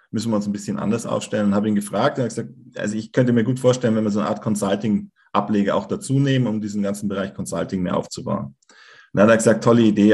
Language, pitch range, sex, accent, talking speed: German, 100-115 Hz, male, German, 255 wpm